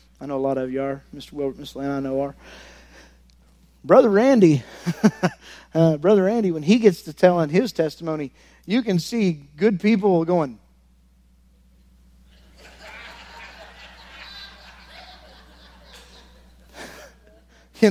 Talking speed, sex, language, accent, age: 115 wpm, male, English, American, 40-59